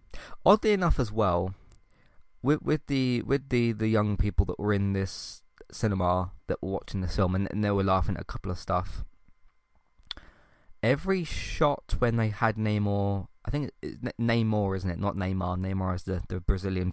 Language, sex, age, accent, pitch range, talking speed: English, male, 20-39, British, 95-115 Hz, 185 wpm